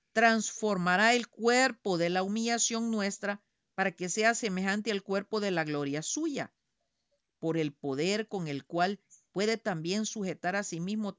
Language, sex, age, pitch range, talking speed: Spanish, female, 50-69, 175-230 Hz, 155 wpm